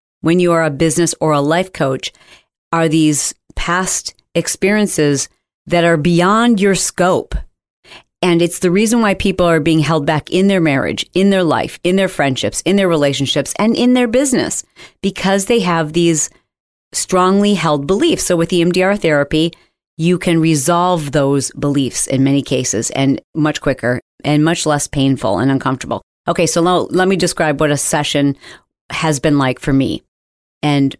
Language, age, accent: English, 40-59, American